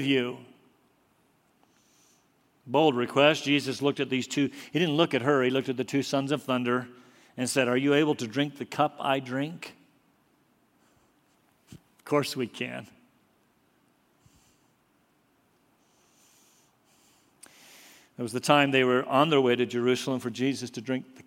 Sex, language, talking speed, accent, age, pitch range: male, English, 145 wpm, American, 50-69, 125-155 Hz